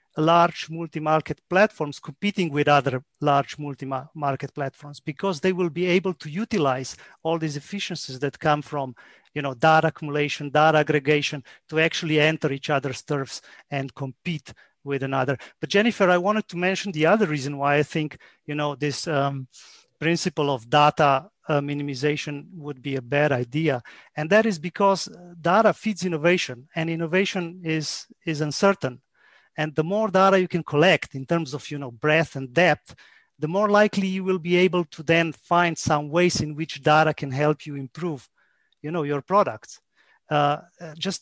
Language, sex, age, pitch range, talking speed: English, male, 40-59, 145-180 Hz, 170 wpm